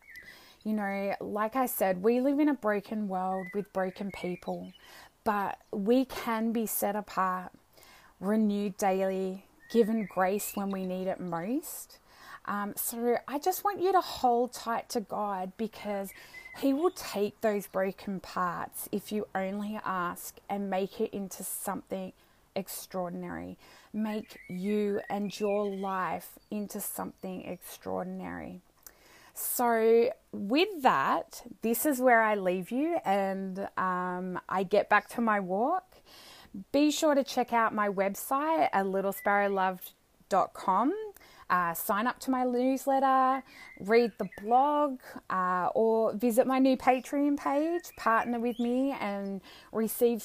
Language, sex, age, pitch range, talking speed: English, female, 20-39, 195-250 Hz, 135 wpm